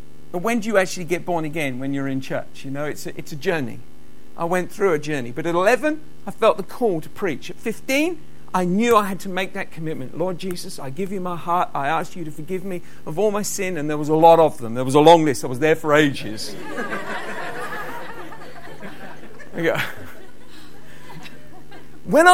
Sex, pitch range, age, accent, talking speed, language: male, 170-250 Hz, 50-69, British, 205 wpm, English